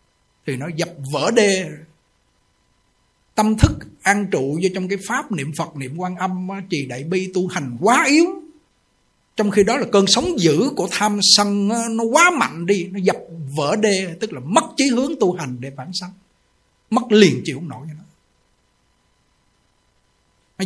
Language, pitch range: Vietnamese, 145-195 Hz